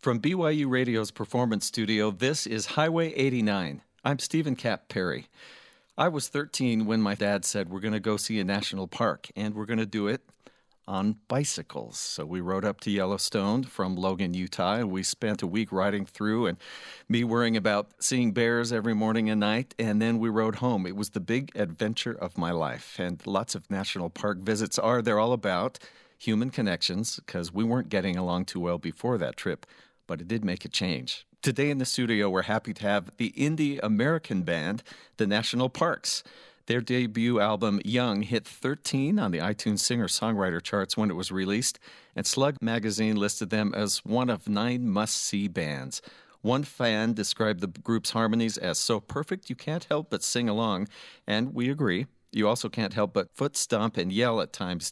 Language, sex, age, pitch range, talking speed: English, male, 50-69, 100-125 Hz, 190 wpm